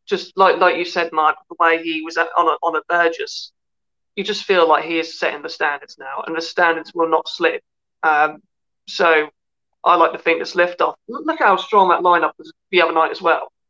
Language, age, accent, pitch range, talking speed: English, 20-39, British, 165-230 Hz, 225 wpm